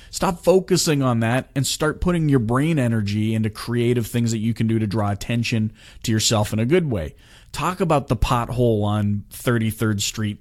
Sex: male